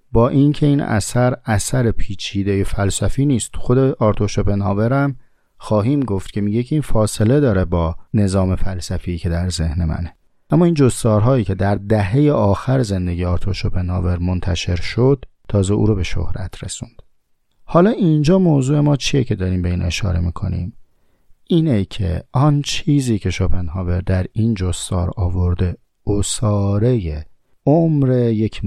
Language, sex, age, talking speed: Persian, male, 40-59, 140 wpm